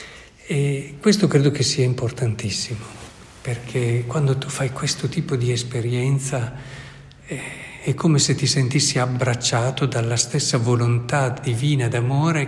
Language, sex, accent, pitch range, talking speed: Italian, male, native, 120-140 Hz, 115 wpm